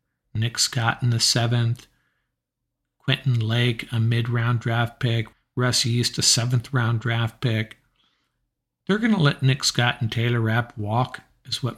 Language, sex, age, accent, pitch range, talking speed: English, male, 50-69, American, 115-130 Hz, 150 wpm